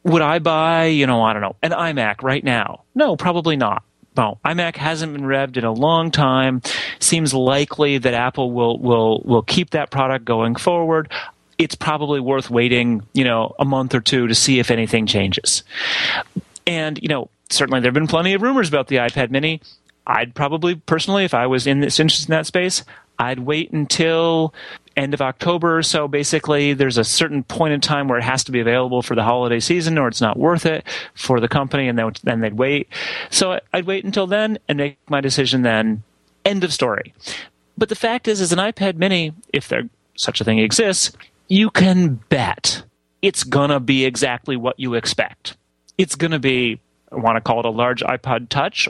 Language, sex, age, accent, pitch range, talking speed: English, male, 30-49, American, 120-165 Hz, 200 wpm